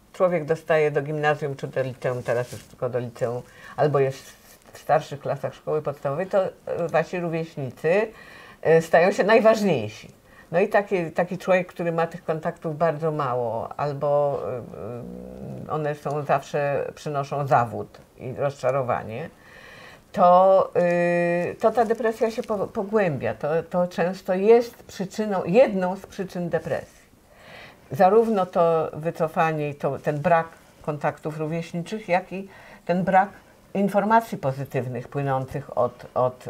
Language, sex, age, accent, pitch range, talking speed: Polish, female, 50-69, native, 135-180 Hz, 125 wpm